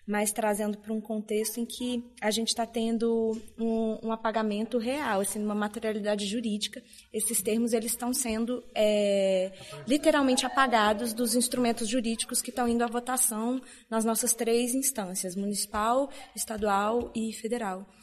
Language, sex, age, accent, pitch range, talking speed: Portuguese, female, 20-39, Brazilian, 210-240 Hz, 145 wpm